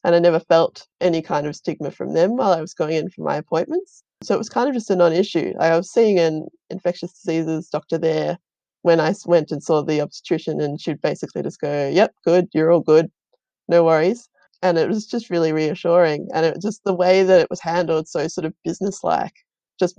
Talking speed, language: 220 wpm, English